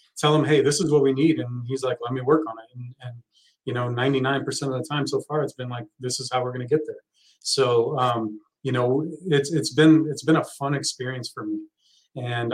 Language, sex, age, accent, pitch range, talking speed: English, male, 30-49, American, 130-150 Hz, 250 wpm